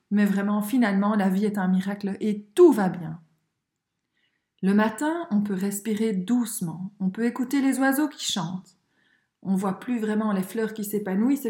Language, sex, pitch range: French, female, 200-265 Hz